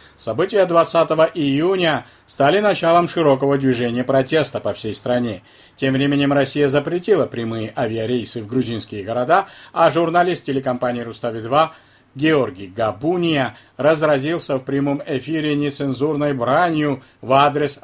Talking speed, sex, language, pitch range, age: 120 wpm, male, Russian, 125-155 Hz, 50-69